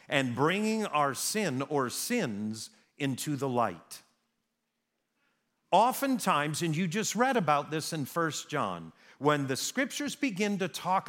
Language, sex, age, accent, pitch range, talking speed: English, male, 50-69, American, 140-215 Hz, 135 wpm